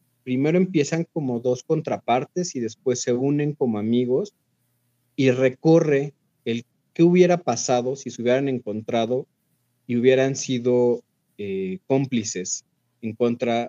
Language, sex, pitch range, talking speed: Spanish, male, 120-140 Hz, 125 wpm